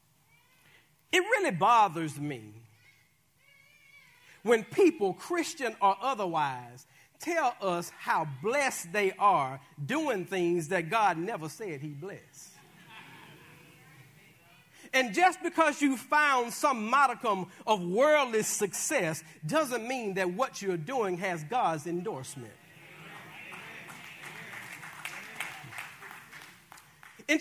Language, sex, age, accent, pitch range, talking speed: English, male, 40-59, American, 155-260 Hz, 95 wpm